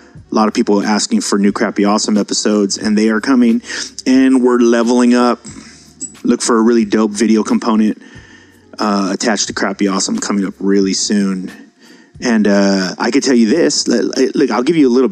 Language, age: English, 30-49